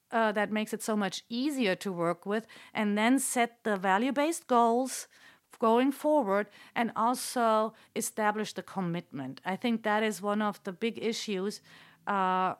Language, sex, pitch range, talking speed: English, female, 185-230 Hz, 155 wpm